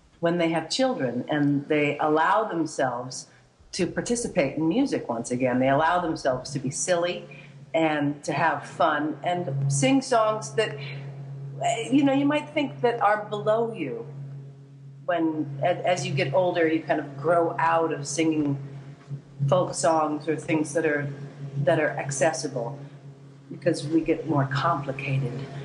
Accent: American